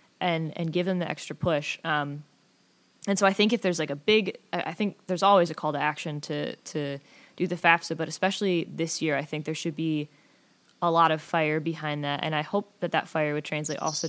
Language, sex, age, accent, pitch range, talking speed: English, female, 20-39, American, 155-180 Hz, 230 wpm